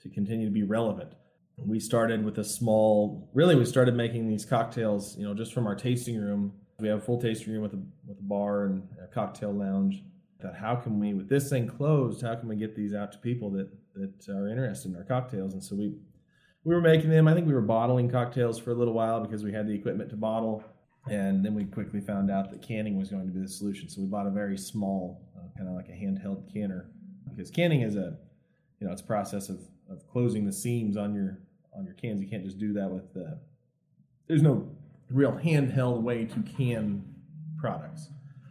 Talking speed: 225 wpm